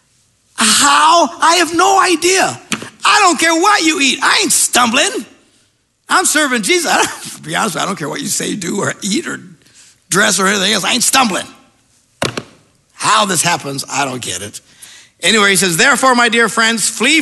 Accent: American